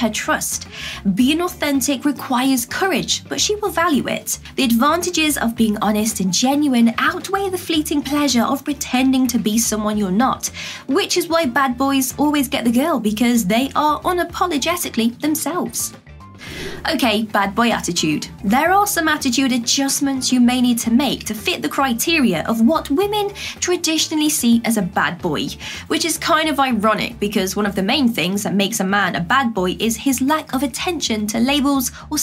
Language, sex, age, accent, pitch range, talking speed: English, female, 20-39, British, 220-295 Hz, 180 wpm